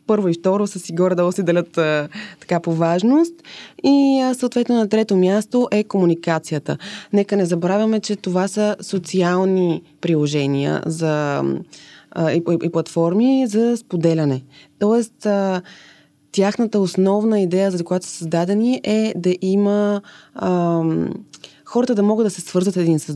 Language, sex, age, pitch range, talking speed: Bulgarian, female, 20-39, 170-220 Hz, 135 wpm